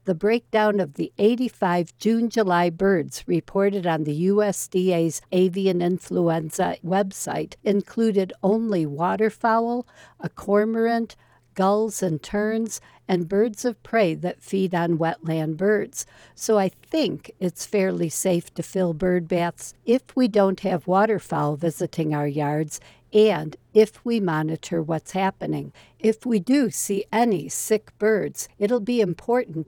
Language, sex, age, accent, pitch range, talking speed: English, female, 60-79, American, 165-210 Hz, 130 wpm